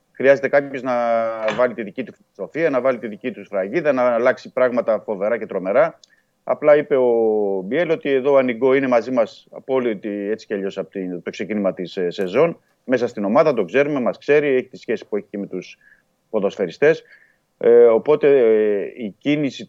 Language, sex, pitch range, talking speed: Greek, male, 95-140 Hz, 180 wpm